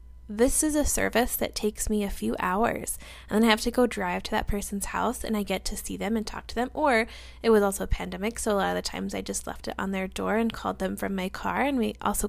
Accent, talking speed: American, 290 wpm